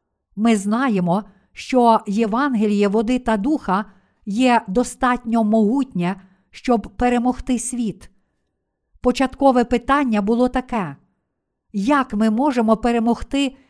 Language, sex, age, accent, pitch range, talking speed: Ukrainian, female, 50-69, native, 210-255 Hz, 90 wpm